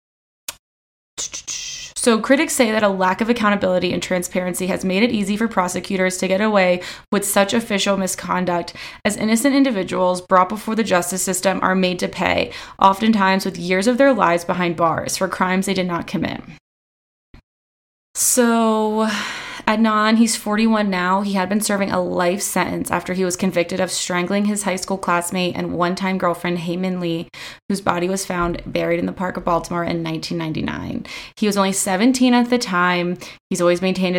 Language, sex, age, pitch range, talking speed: English, female, 20-39, 180-215 Hz, 170 wpm